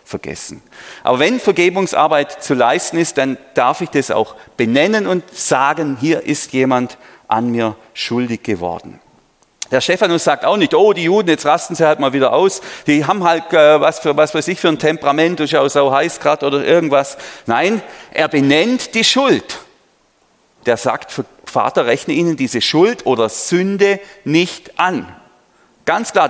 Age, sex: 40-59, male